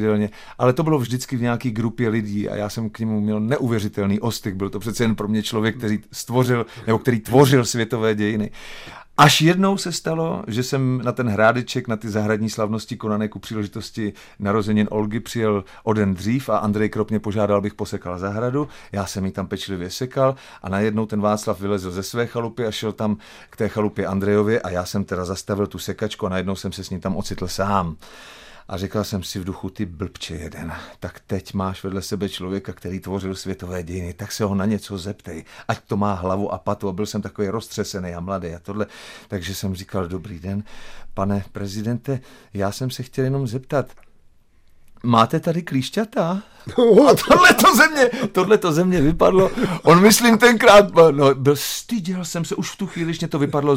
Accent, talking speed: native, 195 wpm